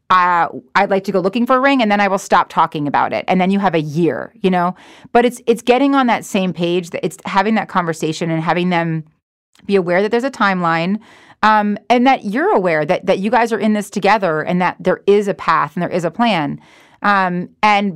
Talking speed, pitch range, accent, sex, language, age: 245 wpm, 170-220 Hz, American, female, English, 30-49